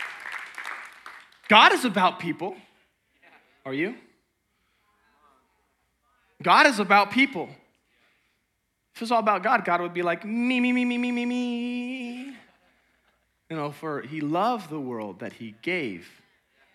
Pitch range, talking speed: 135-220 Hz, 135 wpm